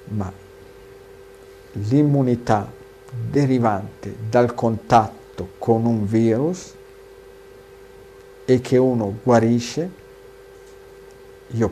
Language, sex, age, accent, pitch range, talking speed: Italian, male, 50-69, native, 105-145 Hz, 65 wpm